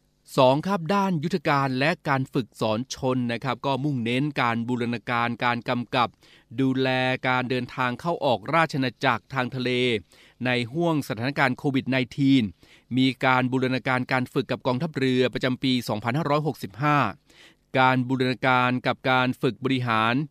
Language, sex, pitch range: Thai, male, 120-140 Hz